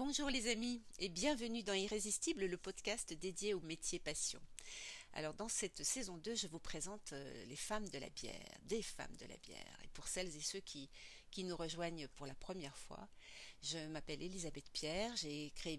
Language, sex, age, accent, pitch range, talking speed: French, female, 60-79, French, 155-205 Hz, 190 wpm